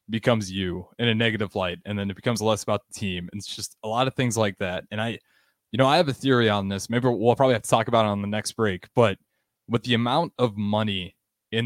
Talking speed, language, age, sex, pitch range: 270 wpm, English, 20-39, male, 100-120 Hz